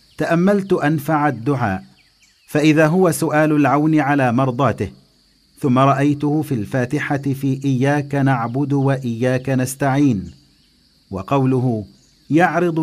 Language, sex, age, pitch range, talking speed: English, male, 50-69, 110-145 Hz, 95 wpm